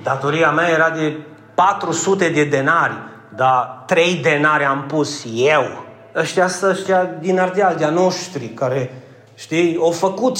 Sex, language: male, Romanian